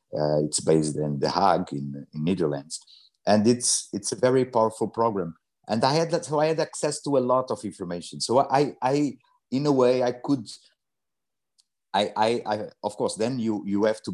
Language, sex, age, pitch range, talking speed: English, male, 50-69, 95-135 Hz, 200 wpm